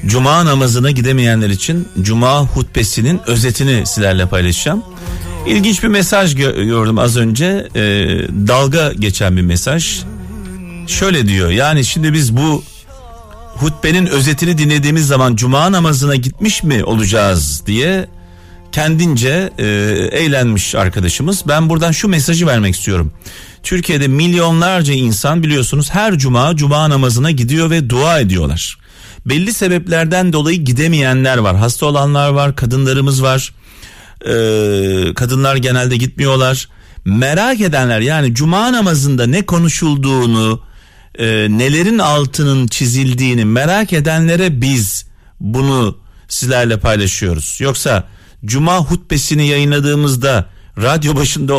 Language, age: Turkish, 40-59